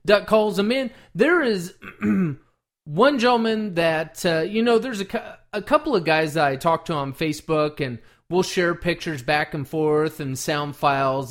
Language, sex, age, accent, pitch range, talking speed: English, male, 30-49, American, 145-205 Hz, 185 wpm